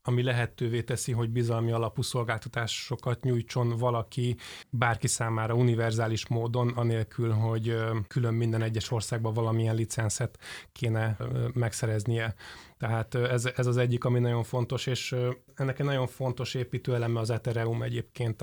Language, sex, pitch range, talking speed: Hungarian, male, 115-125 Hz, 135 wpm